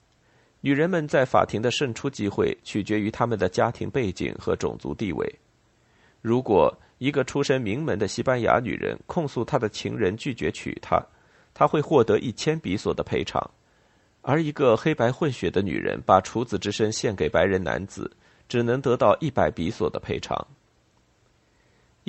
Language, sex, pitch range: Chinese, male, 105-135 Hz